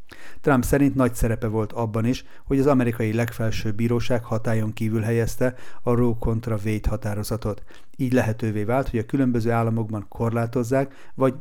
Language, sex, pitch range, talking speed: Hungarian, male, 110-125 Hz, 155 wpm